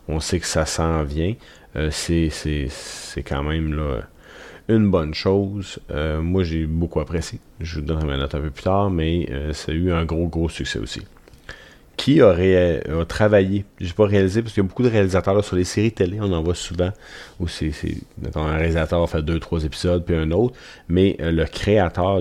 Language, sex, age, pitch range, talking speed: French, male, 30-49, 80-100 Hz, 205 wpm